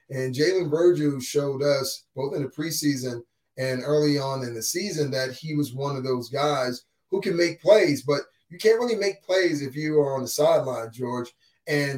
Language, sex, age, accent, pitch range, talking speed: English, male, 30-49, American, 135-175 Hz, 200 wpm